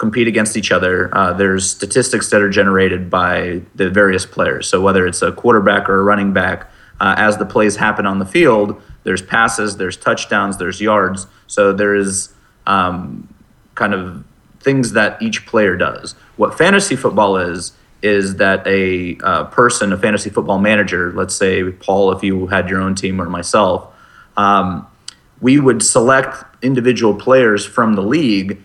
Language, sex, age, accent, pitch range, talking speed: English, male, 30-49, American, 95-110 Hz, 170 wpm